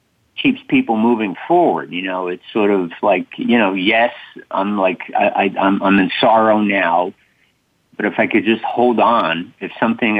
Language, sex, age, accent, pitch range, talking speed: English, male, 50-69, American, 95-120 Hz, 180 wpm